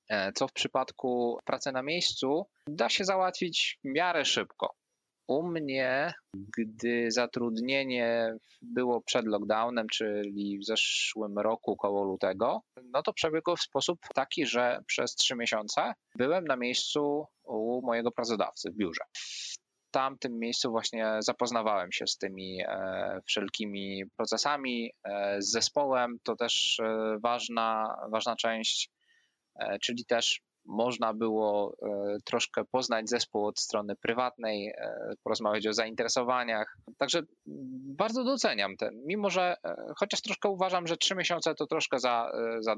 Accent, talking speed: native, 125 wpm